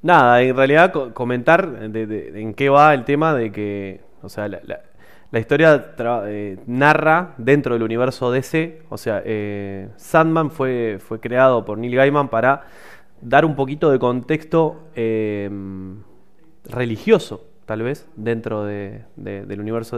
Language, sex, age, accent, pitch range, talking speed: Spanish, male, 20-39, Argentinian, 110-140 Hz, 155 wpm